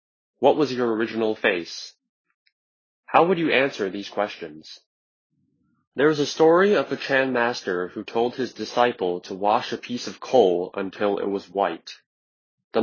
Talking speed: 160 wpm